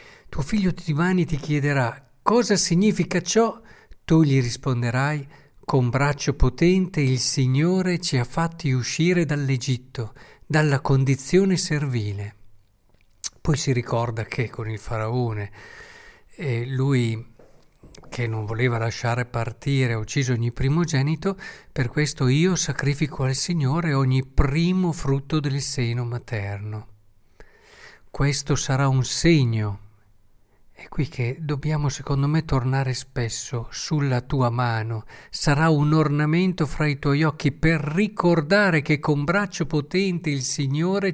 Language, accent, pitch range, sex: Italian, native, 125-165 Hz, male